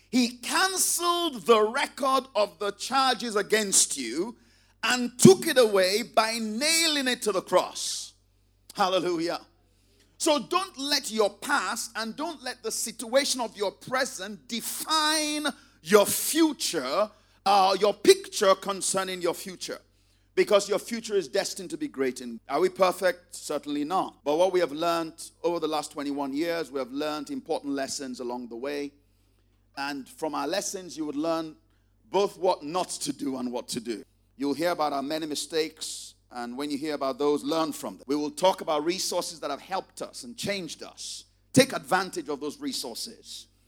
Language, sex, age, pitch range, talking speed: English, male, 50-69, 140-215 Hz, 165 wpm